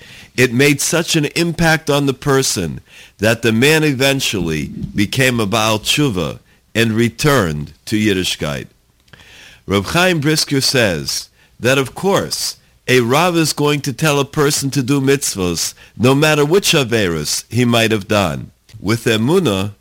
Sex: male